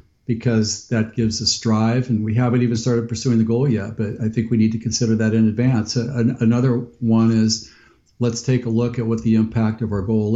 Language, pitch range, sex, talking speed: English, 110-120 Hz, male, 230 wpm